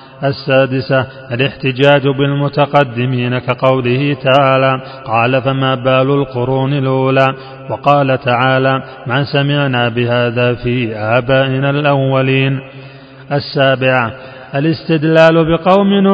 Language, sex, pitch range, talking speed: Arabic, male, 130-155 Hz, 80 wpm